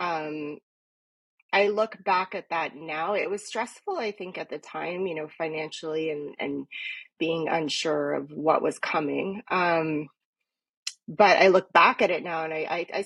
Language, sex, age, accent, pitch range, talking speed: English, female, 30-49, American, 150-185 Hz, 175 wpm